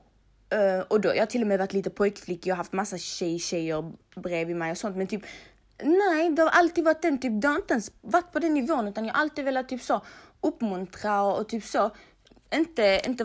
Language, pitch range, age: Swedish, 180-240 Hz, 20-39